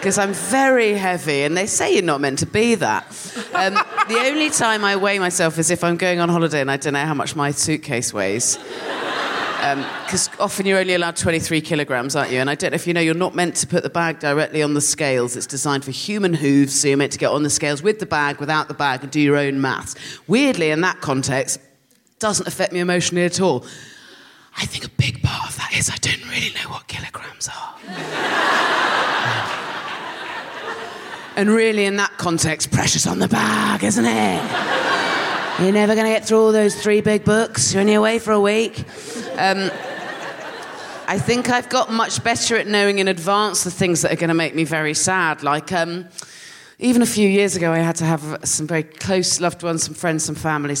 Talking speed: 215 wpm